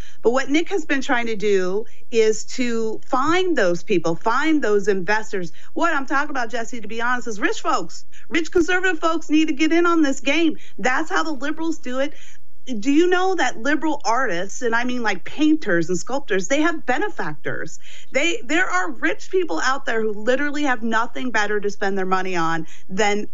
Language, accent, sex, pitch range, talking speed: English, American, female, 210-295 Hz, 200 wpm